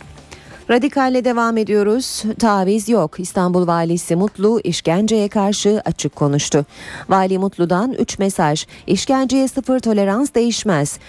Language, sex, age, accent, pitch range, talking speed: Turkish, female, 40-59, native, 160-230 Hz, 110 wpm